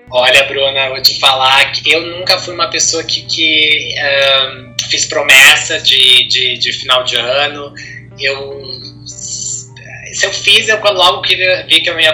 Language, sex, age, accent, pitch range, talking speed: Portuguese, male, 20-39, Brazilian, 130-175 Hz, 155 wpm